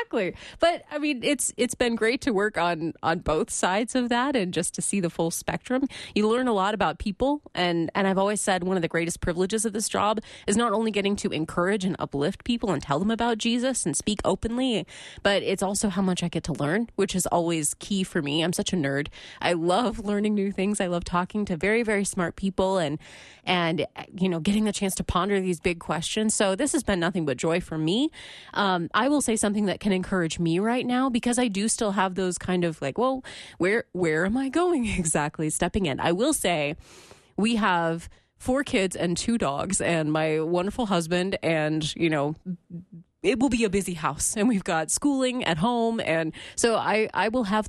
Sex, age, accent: female, 30-49, American